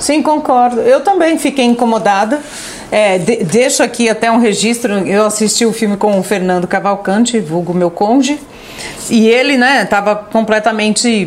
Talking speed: 155 wpm